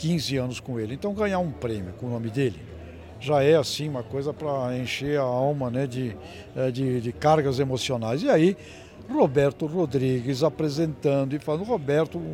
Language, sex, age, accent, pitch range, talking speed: Portuguese, male, 60-79, Brazilian, 120-150 Hz, 170 wpm